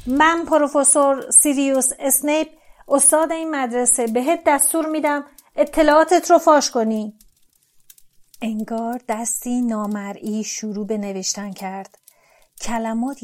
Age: 40-59